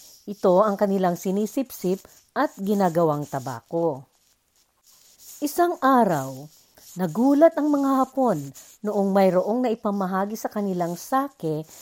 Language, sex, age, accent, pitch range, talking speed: Filipino, female, 50-69, native, 170-260 Hz, 100 wpm